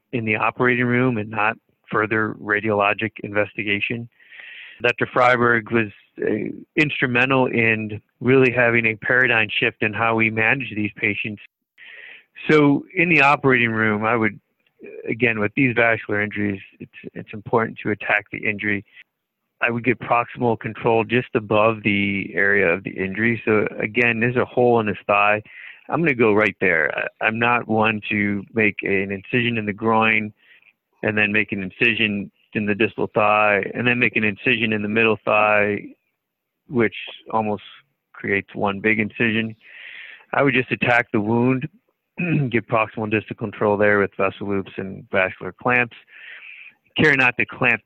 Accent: American